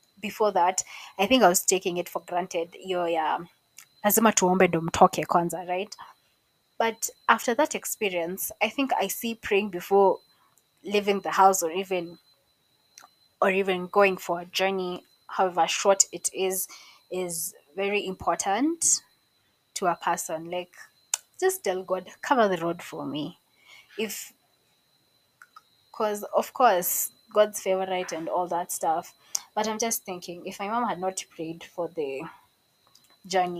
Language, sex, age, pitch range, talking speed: English, female, 20-39, 175-215 Hz, 140 wpm